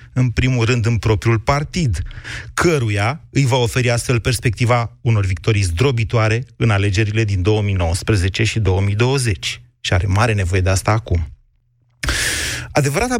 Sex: male